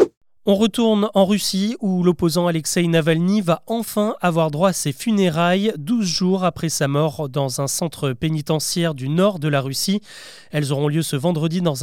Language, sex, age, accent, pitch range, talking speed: French, male, 30-49, French, 155-205 Hz, 180 wpm